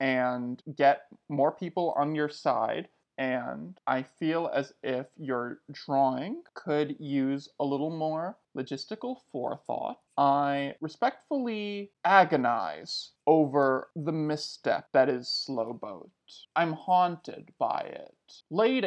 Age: 20-39